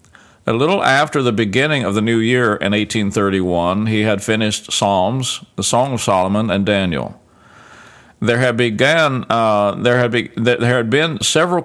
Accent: American